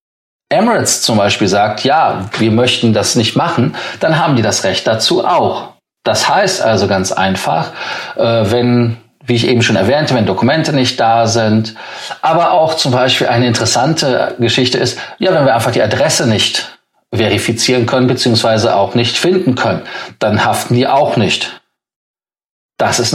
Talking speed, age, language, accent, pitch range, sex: 160 wpm, 40-59, German, German, 110-130 Hz, male